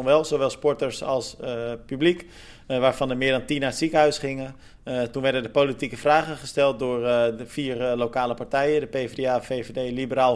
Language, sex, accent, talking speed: Dutch, male, Dutch, 195 wpm